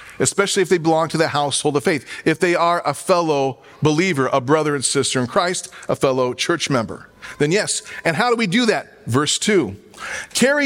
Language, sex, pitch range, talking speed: English, male, 165-220 Hz, 205 wpm